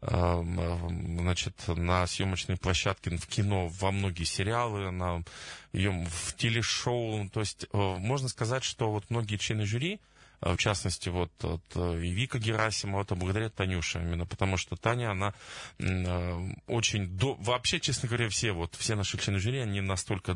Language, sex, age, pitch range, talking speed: Russian, male, 20-39, 90-110 Hz, 140 wpm